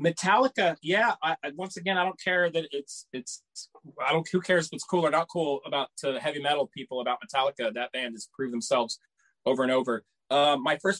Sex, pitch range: male, 140-185 Hz